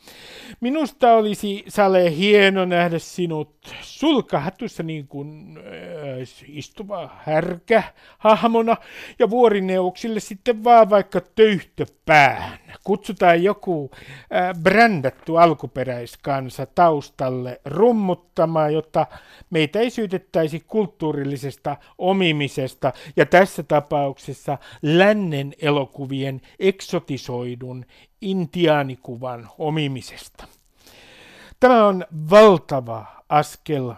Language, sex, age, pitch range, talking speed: Finnish, male, 60-79, 145-195 Hz, 75 wpm